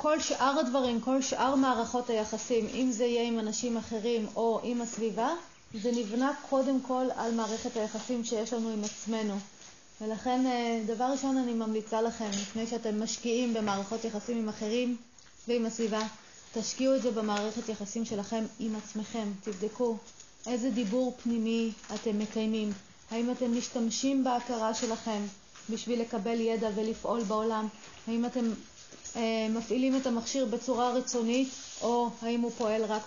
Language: Hebrew